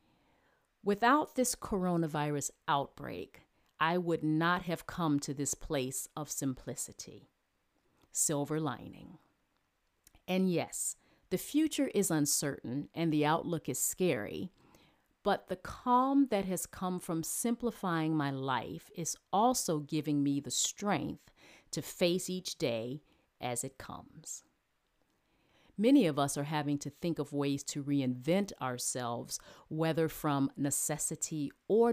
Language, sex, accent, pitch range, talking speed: Ukrainian, female, American, 140-185 Hz, 125 wpm